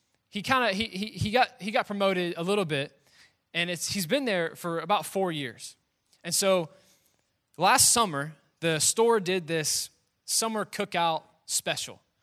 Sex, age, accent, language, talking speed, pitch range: male, 20-39, American, English, 160 wpm, 155-210 Hz